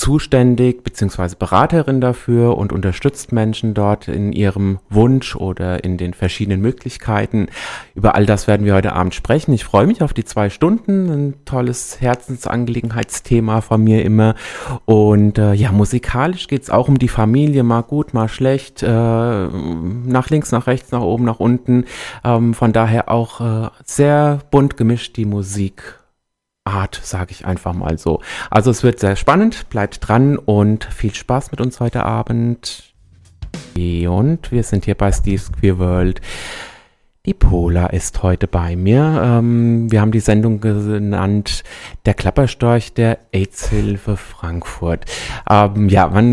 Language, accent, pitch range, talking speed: German, German, 100-125 Hz, 150 wpm